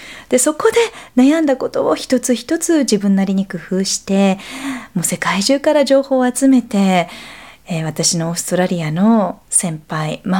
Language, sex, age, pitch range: Japanese, female, 40-59, 195-275 Hz